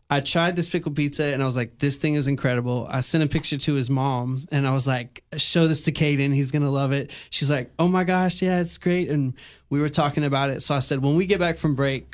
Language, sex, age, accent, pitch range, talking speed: English, male, 20-39, American, 135-155 Hz, 275 wpm